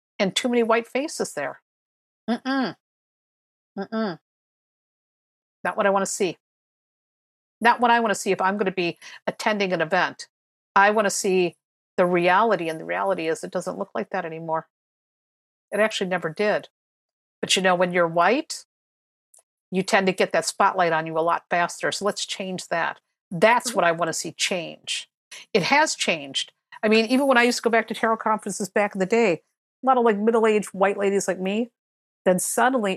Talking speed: 195 wpm